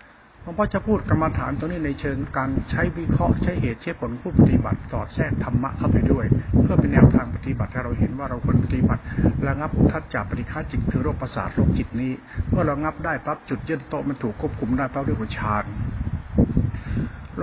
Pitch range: 115-150 Hz